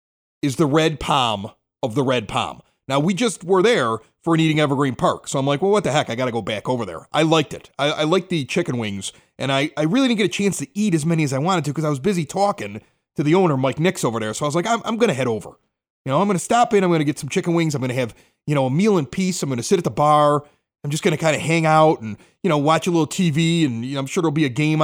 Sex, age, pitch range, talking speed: male, 30-49, 135-185 Hz, 325 wpm